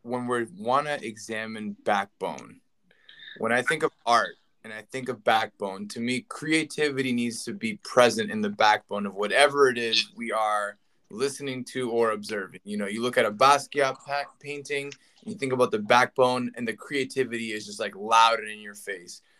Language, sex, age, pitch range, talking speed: English, male, 20-39, 115-145 Hz, 185 wpm